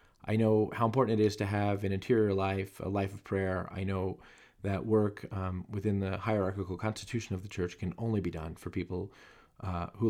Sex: male